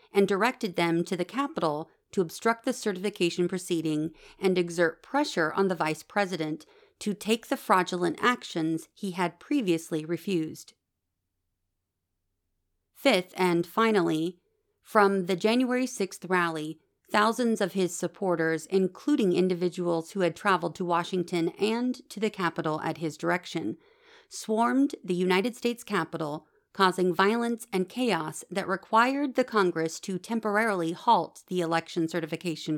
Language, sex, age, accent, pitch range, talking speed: English, female, 40-59, American, 165-220 Hz, 130 wpm